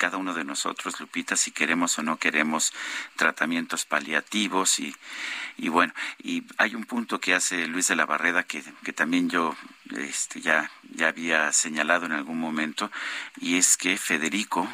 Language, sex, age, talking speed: Spanish, male, 50-69, 165 wpm